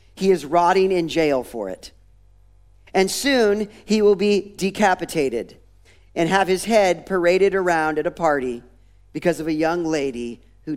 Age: 50-69